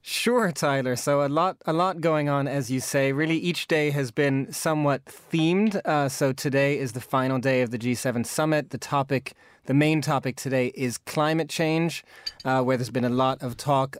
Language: English